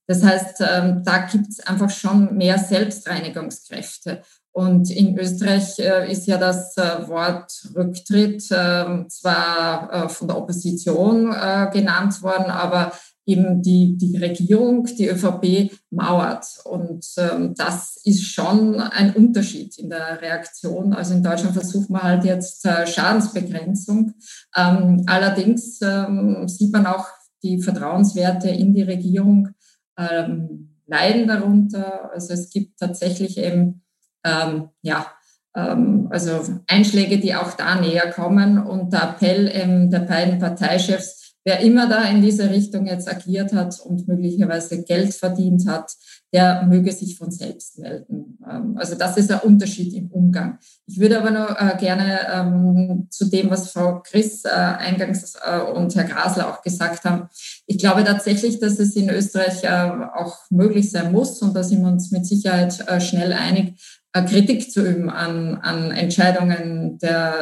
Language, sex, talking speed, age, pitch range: German, female, 135 wpm, 20-39, 180-200 Hz